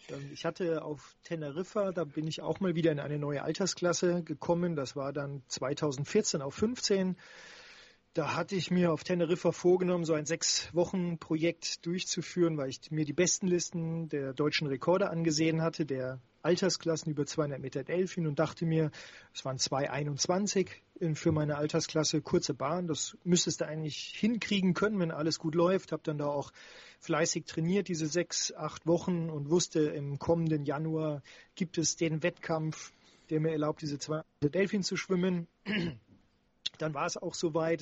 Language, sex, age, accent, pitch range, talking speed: German, male, 40-59, German, 150-175 Hz, 165 wpm